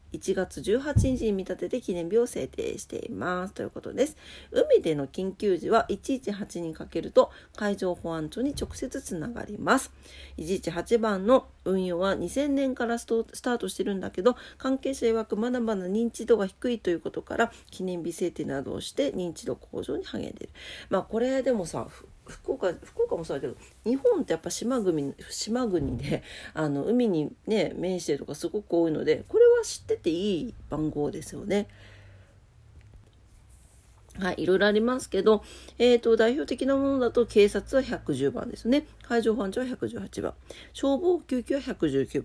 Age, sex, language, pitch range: 40-59, female, Japanese, 170-245 Hz